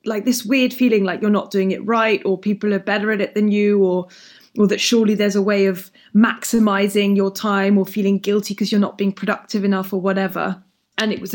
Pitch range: 190-210 Hz